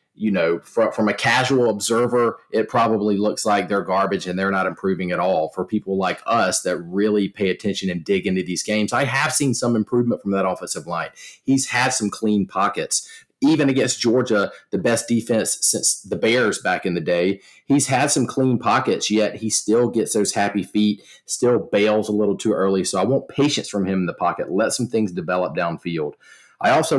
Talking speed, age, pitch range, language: 205 wpm, 40-59, 100-130 Hz, English